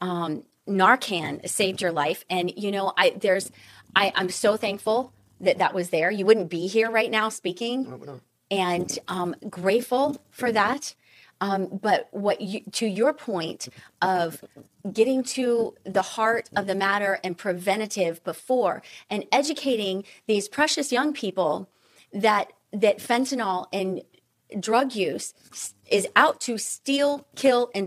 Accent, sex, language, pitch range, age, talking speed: American, female, English, 190-240 Hz, 30-49, 140 wpm